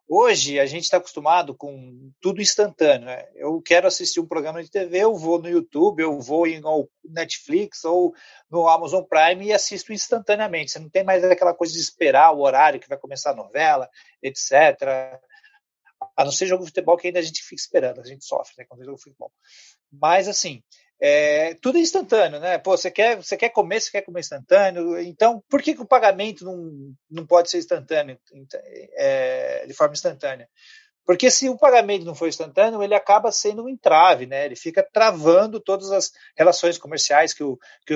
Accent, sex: Brazilian, male